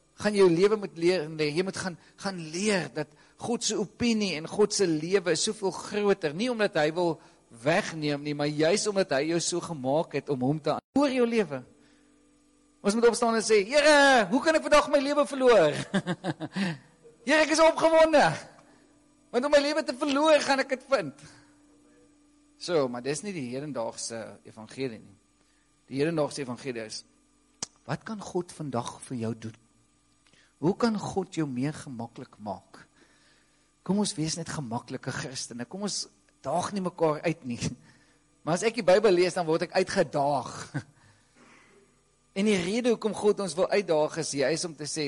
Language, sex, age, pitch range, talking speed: English, male, 50-69, 130-205 Hz, 175 wpm